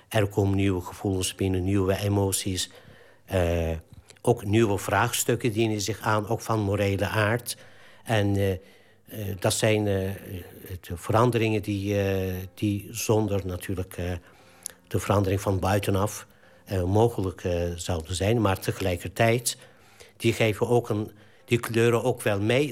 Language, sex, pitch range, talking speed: Dutch, male, 95-115 Hz, 135 wpm